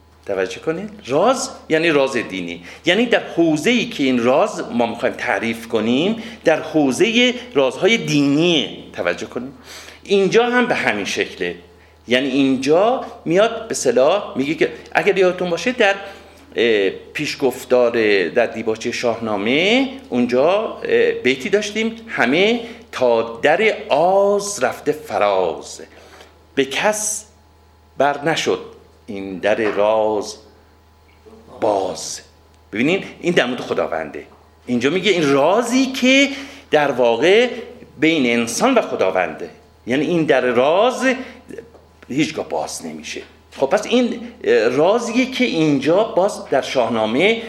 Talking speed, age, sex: 115 wpm, 50-69, male